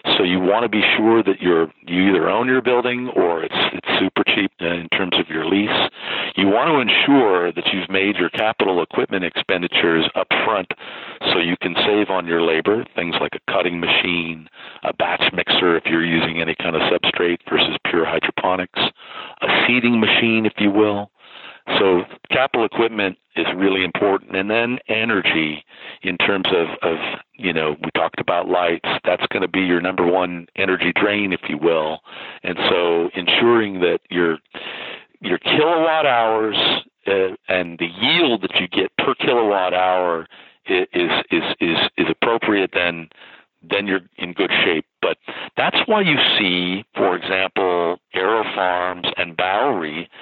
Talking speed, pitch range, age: 170 wpm, 85-105 Hz, 50-69